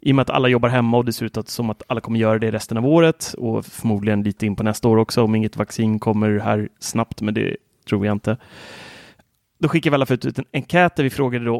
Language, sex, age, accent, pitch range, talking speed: English, male, 30-49, Swedish, 110-135 Hz, 265 wpm